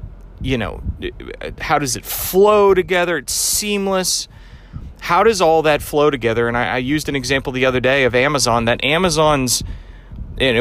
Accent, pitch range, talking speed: American, 115-145 Hz, 165 wpm